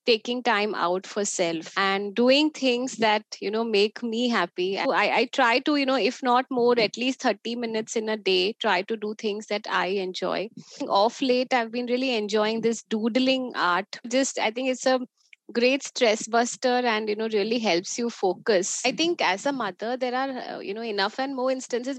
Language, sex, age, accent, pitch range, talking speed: English, female, 20-39, Indian, 210-255 Hz, 200 wpm